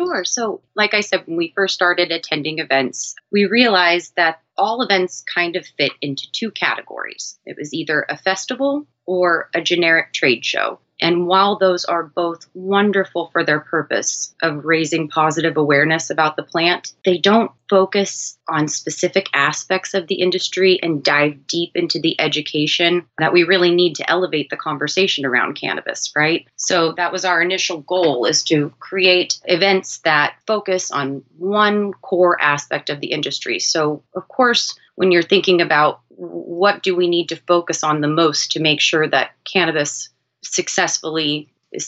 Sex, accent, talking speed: female, American, 165 wpm